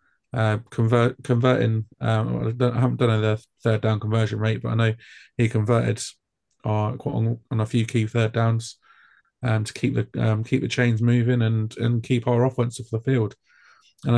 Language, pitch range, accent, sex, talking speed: English, 110-125 Hz, British, male, 195 wpm